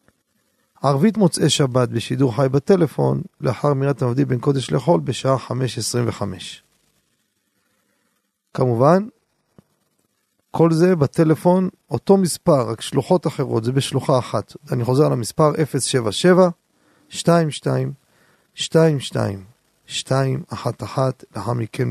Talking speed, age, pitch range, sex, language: 85 wpm, 40-59, 130-165 Hz, male, Hebrew